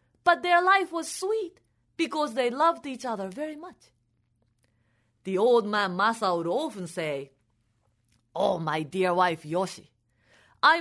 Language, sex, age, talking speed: English, female, 30-49, 140 wpm